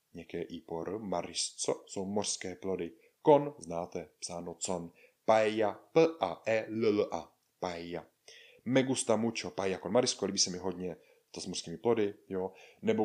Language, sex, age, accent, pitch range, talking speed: Czech, male, 30-49, native, 90-125 Hz, 130 wpm